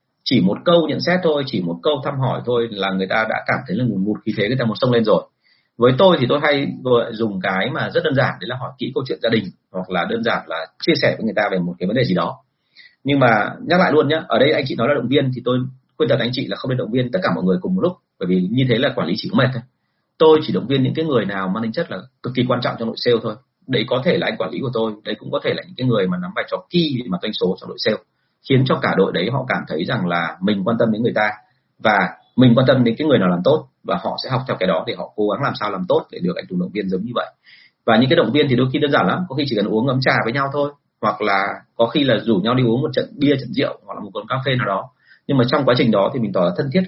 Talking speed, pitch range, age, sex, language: 335 wpm, 105-145 Hz, 30-49, male, Vietnamese